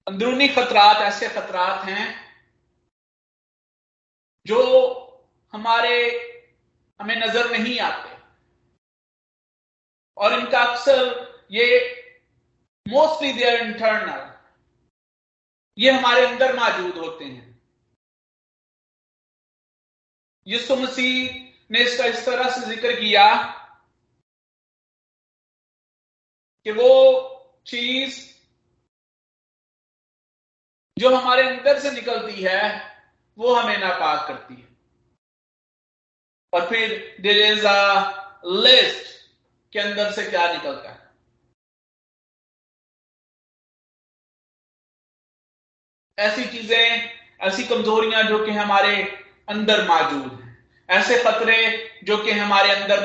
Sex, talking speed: male, 80 wpm